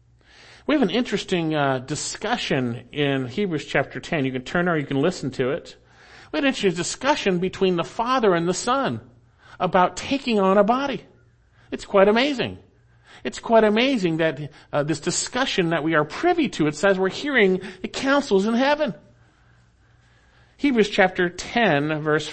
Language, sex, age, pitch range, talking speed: English, male, 50-69, 120-190 Hz, 165 wpm